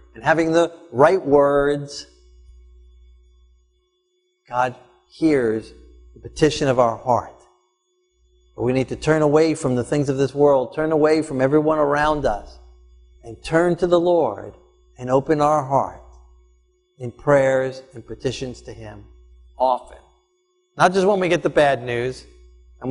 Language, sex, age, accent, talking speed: English, male, 50-69, American, 145 wpm